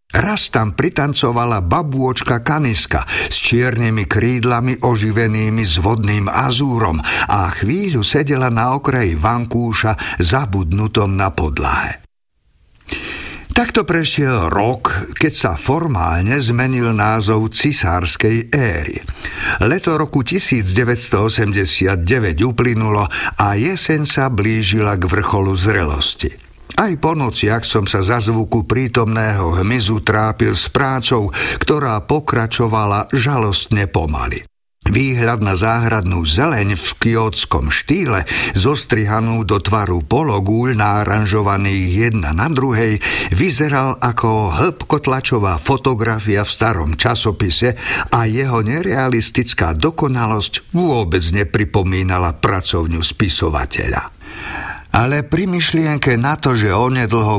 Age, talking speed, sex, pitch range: 50-69, 100 wpm, male, 100-125 Hz